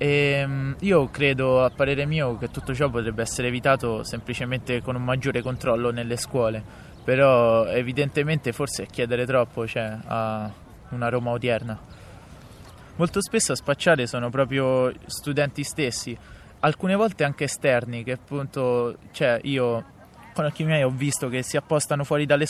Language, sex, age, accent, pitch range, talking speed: Italian, male, 20-39, native, 120-140 Hz, 150 wpm